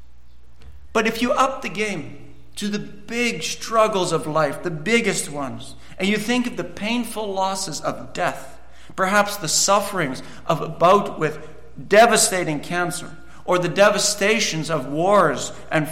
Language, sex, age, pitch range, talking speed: English, male, 50-69, 145-205 Hz, 145 wpm